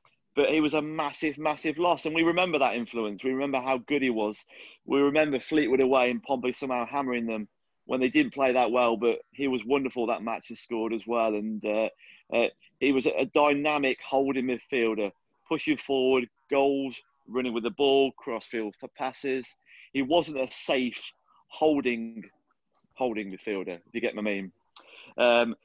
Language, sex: English, male